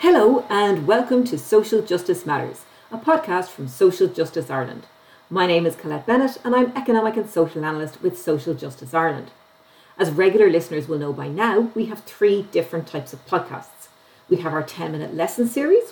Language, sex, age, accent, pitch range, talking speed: English, female, 40-59, Irish, 155-220 Hz, 180 wpm